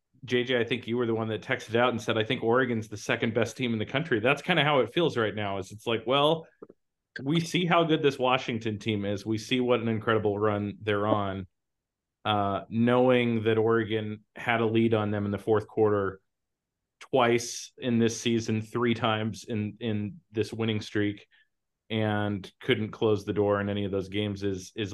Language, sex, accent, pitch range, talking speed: English, male, American, 105-120 Hz, 205 wpm